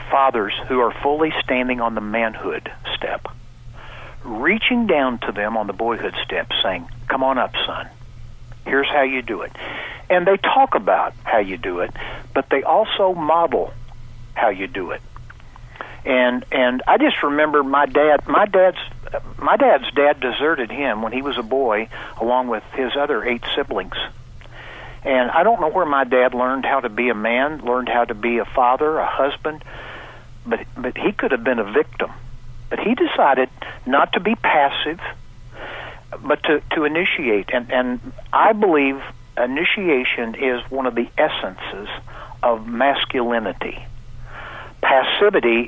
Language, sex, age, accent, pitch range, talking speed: English, male, 60-79, American, 120-140 Hz, 160 wpm